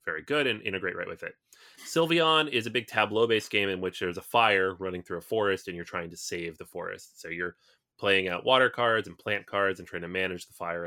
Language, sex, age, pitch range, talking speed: English, male, 20-39, 90-120 Hz, 250 wpm